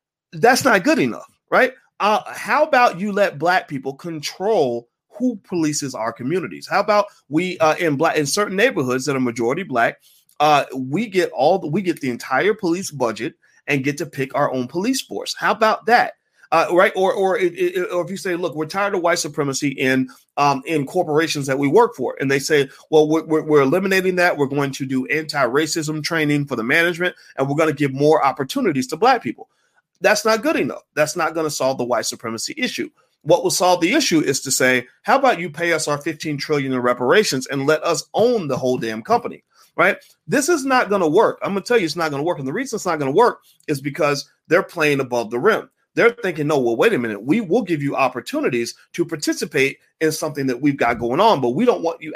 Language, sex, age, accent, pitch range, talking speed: English, male, 30-49, American, 140-200 Hz, 230 wpm